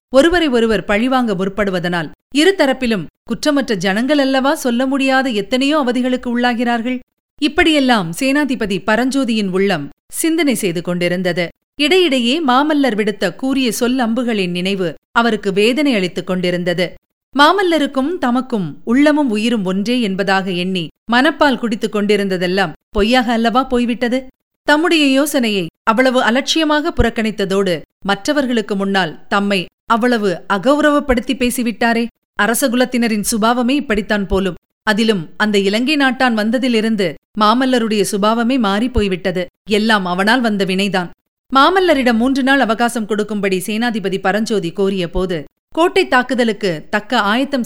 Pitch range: 195-260 Hz